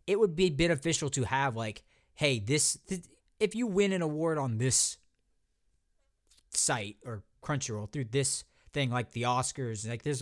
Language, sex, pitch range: English, male, 105-155 Hz